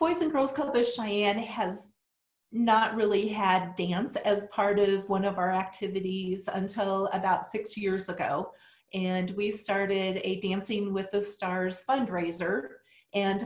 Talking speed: 145 wpm